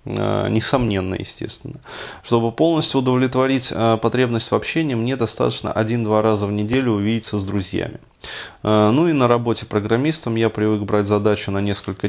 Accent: native